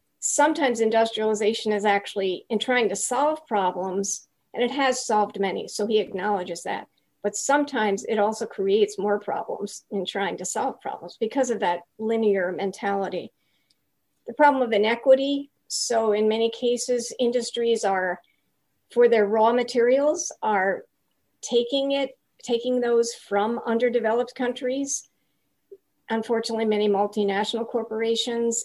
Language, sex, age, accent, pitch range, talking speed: English, female, 50-69, American, 205-240 Hz, 130 wpm